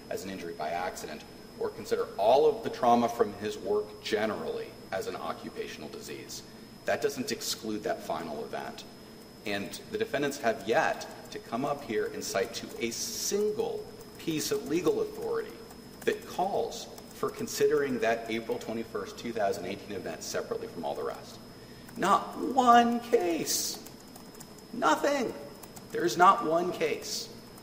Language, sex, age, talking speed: English, male, 40-59, 145 wpm